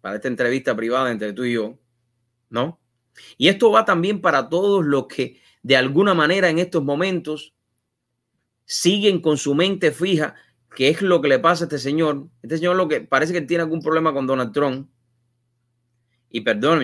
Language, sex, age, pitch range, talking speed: English, male, 30-49, 120-170 Hz, 180 wpm